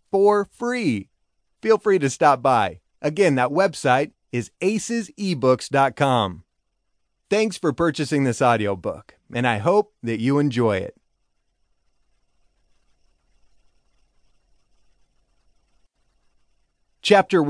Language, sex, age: English, male, 30-49